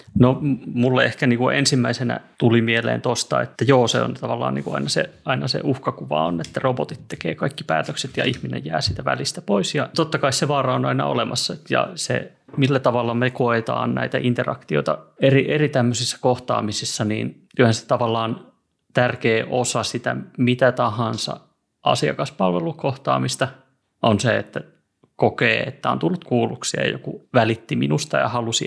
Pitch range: 115-135 Hz